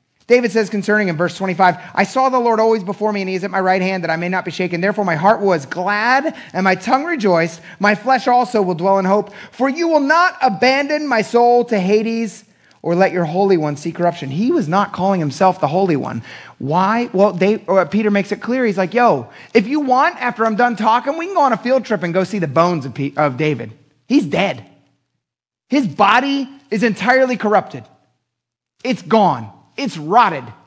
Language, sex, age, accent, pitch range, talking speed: English, male, 30-49, American, 145-225 Hz, 215 wpm